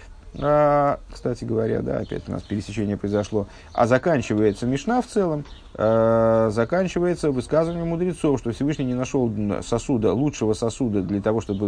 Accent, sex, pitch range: native, male, 100-130 Hz